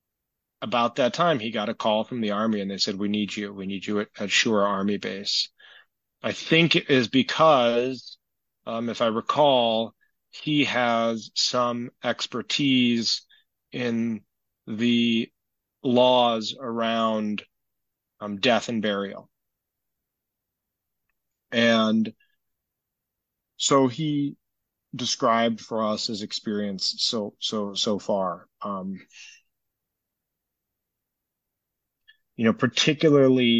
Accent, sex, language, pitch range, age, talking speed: American, male, English, 105-120 Hz, 30-49, 105 wpm